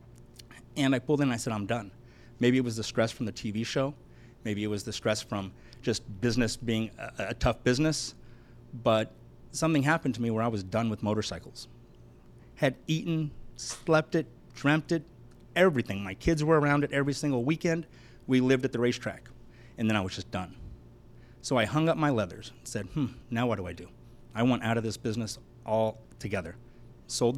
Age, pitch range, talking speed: 30-49, 115-135 Hz, 200 wpm